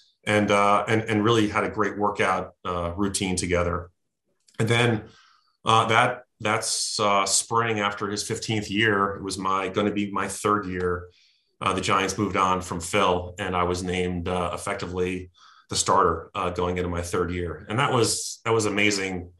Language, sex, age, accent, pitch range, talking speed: English, male, 30-49, American, 95-105 Hz, 185 wpm